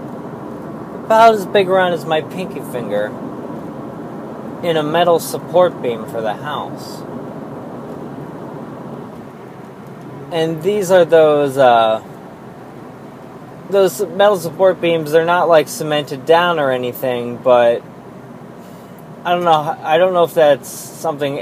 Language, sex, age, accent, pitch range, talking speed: English, male, 20-39, American, 130-175 Hz, 120 wpm